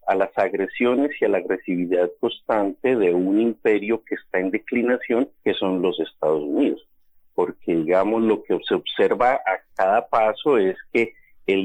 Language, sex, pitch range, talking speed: Spanish, male, 100-135 Hz, 165 wpm